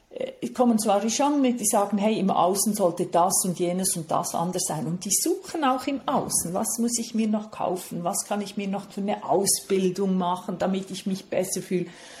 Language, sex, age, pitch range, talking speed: German, female, 40-59, 180-230 Hz, 215 wpm